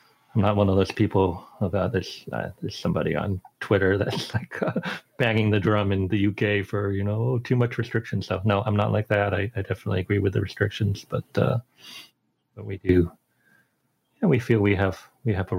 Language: English